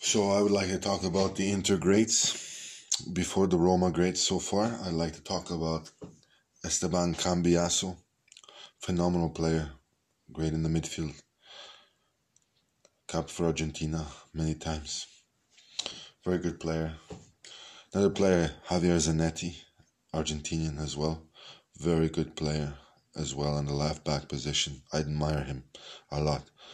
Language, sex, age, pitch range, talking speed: Hebrew, male, 20-39, 75-85 Hz, 130 wpm